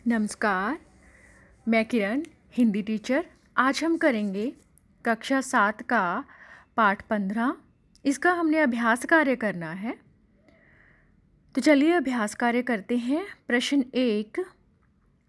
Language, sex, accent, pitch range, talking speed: Hindi, female, native, 215-280 Hz, 105 wpm